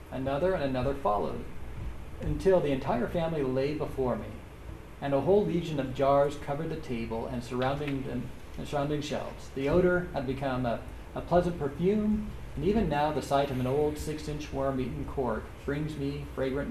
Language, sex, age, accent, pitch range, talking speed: English, male, 40-59, American, 130-155 Hz, 170 wpm